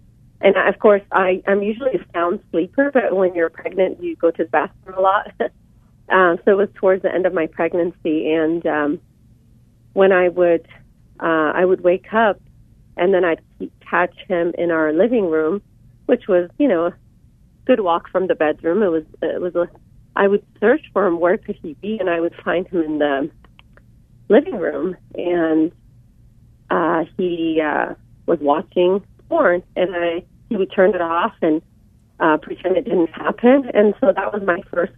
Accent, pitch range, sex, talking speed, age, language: American, 155-185 Hz, female, 180 wpm, 40-59, English